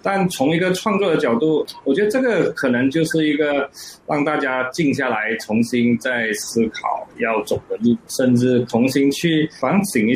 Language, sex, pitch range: Chinese, male, 120-155 Hz